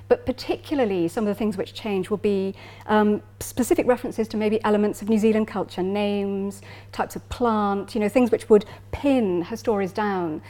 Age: 40-59